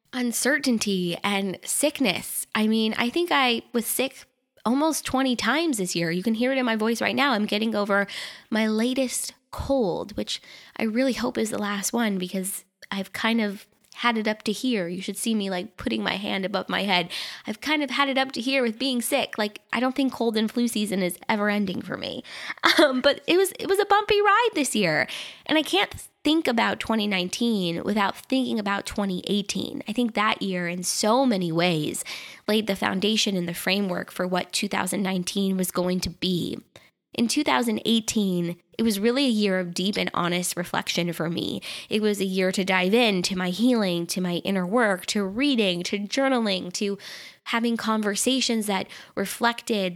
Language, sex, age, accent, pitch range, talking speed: English, female, 20-39, American, 190-245 Hz, 195 wpm